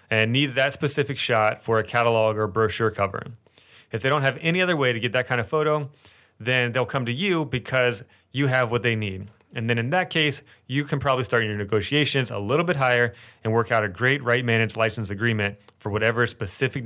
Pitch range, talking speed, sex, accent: 110-135 Hz, 220 wpm, male, American